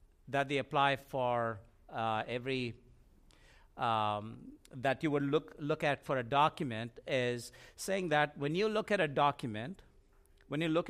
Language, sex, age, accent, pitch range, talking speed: English, male, 50-69, Indian, 120-165 Hz, 155 wpm